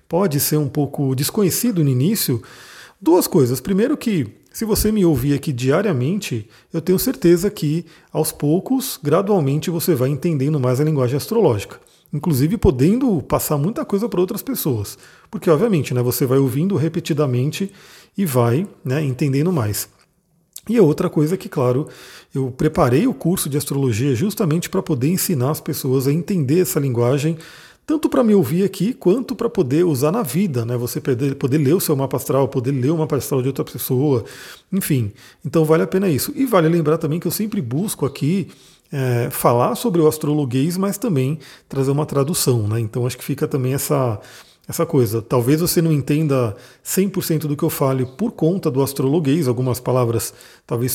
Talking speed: 175 wpm